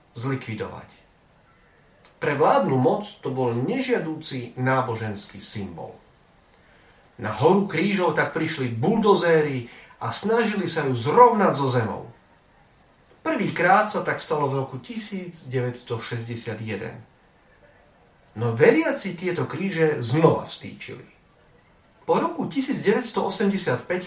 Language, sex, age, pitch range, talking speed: Slovak, male, 40-59, 120-160 Hz, 95 wpm